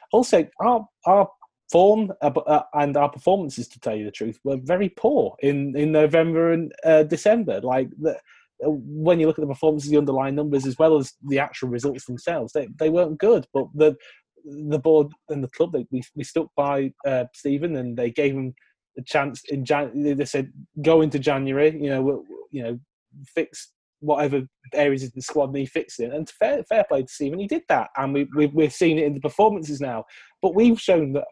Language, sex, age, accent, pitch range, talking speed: English, male, 20-39, British, 135-165 Hz, 205 wpm